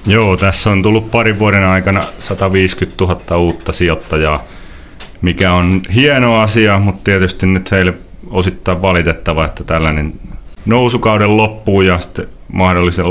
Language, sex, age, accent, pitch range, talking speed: Finnish, male, 30-49, native, 80-100 Hz, 130 wpm